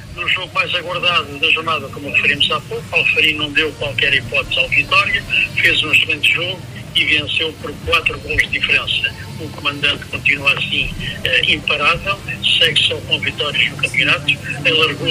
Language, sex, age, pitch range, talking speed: Portuguese, male, 60-79, 130-155 Hz, 165 wpm